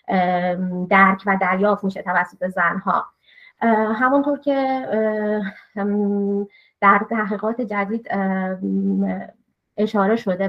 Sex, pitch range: female, 190-225 Hz